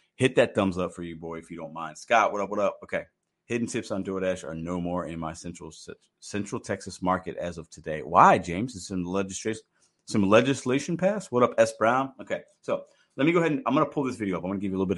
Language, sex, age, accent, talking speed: English, male, 30-49, American, 260 wpm